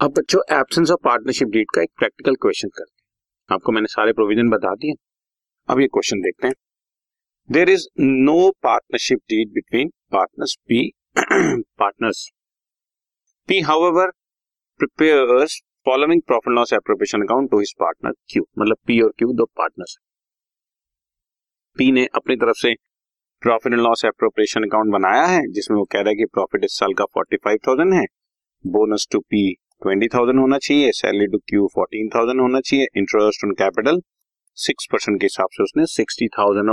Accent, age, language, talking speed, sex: native, 40-59, Hindi, 115 wpm, male